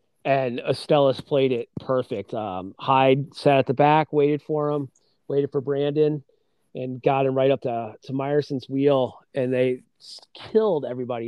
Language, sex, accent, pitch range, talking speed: English, male, American, 125-145 Hz, 160 wpm